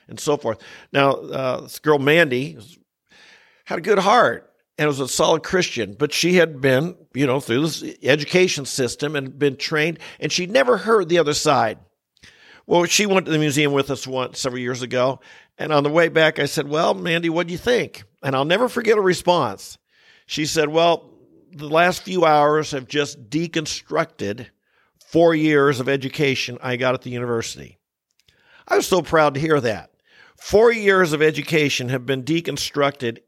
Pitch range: 130-165 Hz